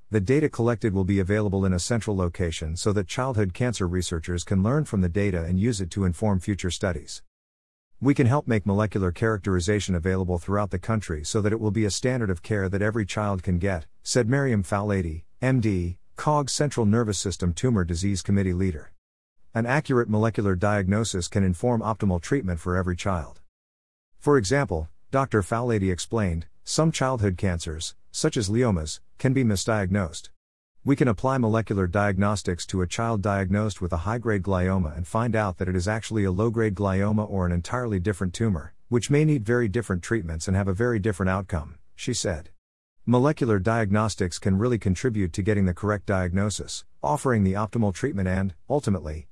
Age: 50-69